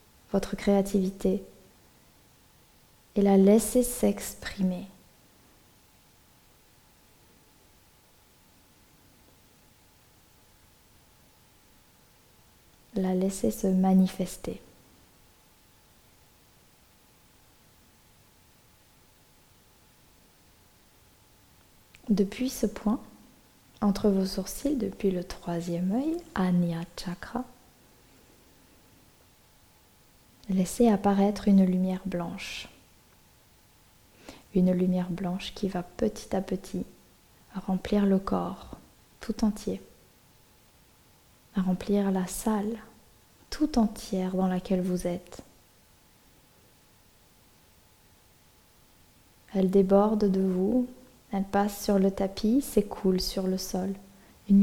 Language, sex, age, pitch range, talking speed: French, female, 20-39, 185-210 Hz, 70 wpm